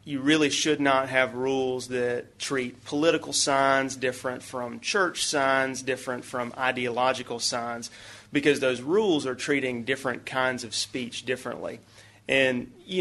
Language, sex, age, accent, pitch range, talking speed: English, male, 30-49, American, 120-135 Hz, 140 wpm